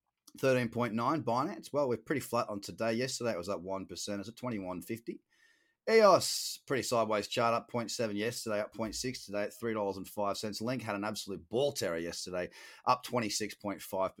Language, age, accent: English, 30-49, Australian